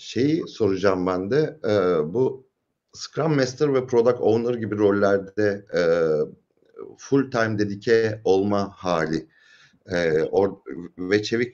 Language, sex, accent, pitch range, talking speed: Turkish, male, native, 95-125 Hz, 120 wpm